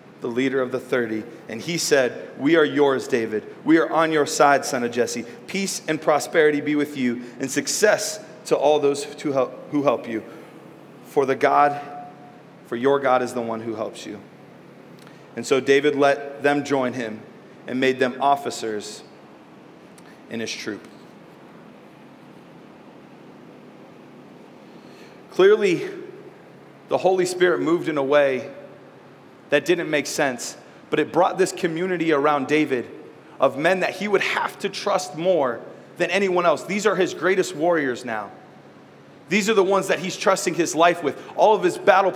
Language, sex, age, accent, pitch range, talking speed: English, male, 30-49, American, 140-195 Hz, 155 wpm